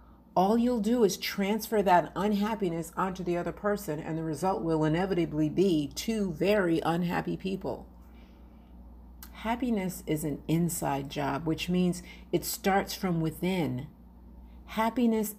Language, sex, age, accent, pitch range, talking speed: English, female, 50-69, American, 130-200 Hz, 130 wpm